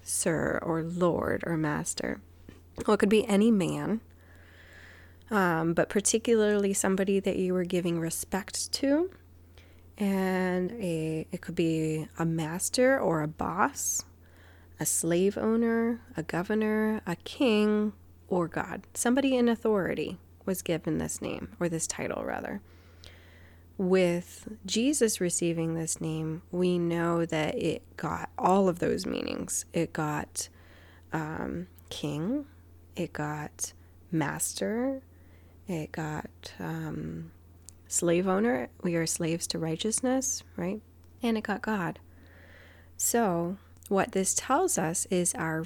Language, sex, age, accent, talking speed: English, female, 20-39, American, 125 wpm